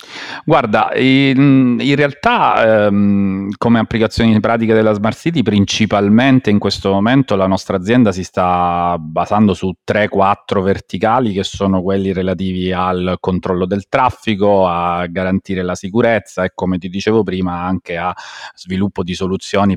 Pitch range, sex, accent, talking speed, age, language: 95-105 Hz, male, native, 140 wpm, 40-59, Italian